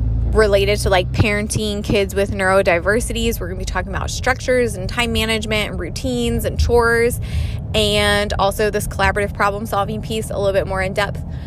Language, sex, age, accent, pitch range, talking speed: English, female, 20-39, American, 175-220 Hz, 180 wpm